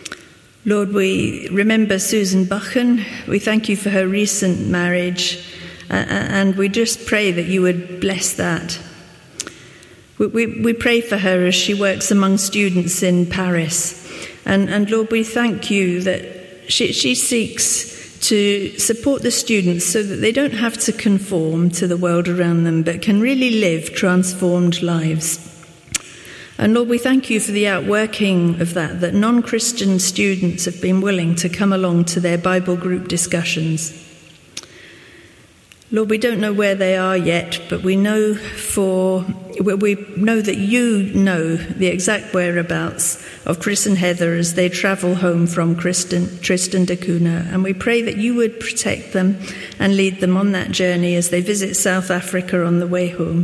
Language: English